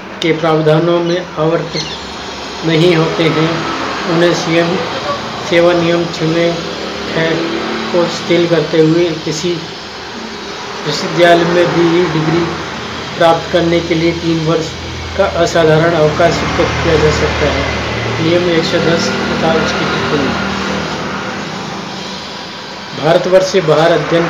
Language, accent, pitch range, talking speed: Hindi, native, 165-180 Hz, 110 wpm